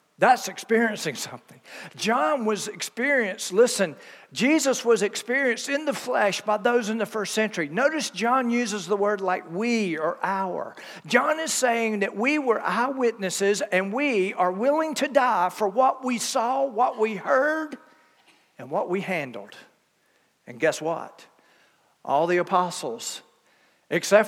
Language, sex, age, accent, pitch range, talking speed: English, male, 50-69, American, 185-245 Hz, 145 wpm